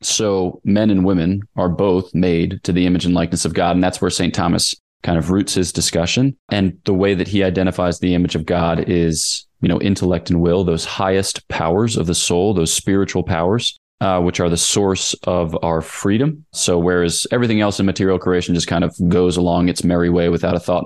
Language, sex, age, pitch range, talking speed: English, male, 20-39, 85-95 Hz, 215 wpm